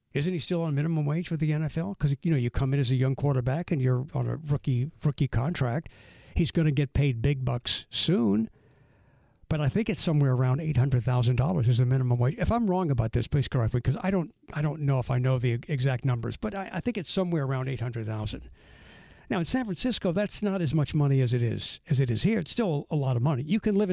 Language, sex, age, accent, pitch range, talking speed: English, male, 60-79, American, 125-160 Hz, 245 wpm